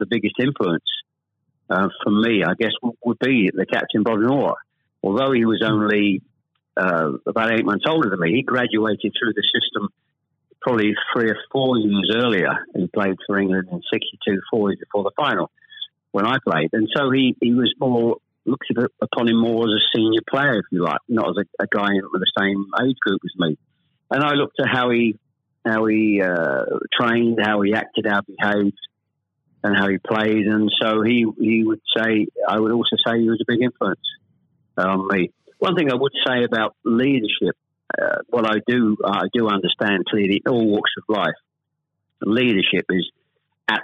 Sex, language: male, English